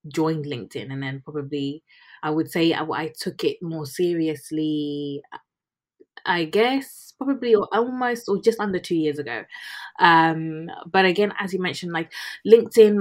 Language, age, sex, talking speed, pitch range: English, 20-39, female, 150 wpm, 150-175 Hz